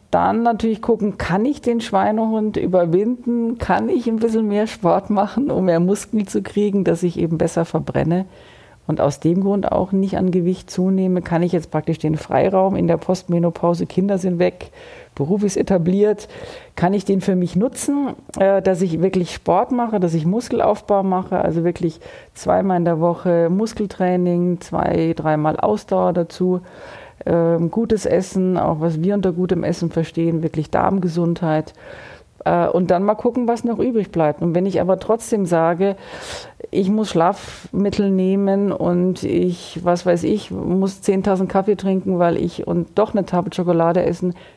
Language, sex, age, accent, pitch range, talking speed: German, female, 40-59, German, 175-205 Hz, 165 wpm